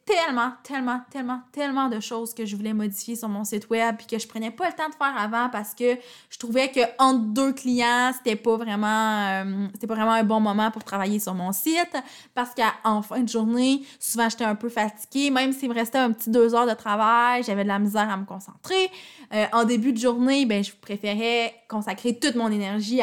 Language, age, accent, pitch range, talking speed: French, 20-39, Canadian, 215-265 Hz, 225 wpm